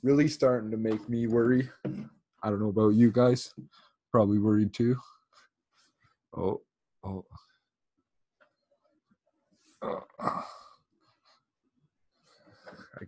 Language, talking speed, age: English, 85 wpm, 20-39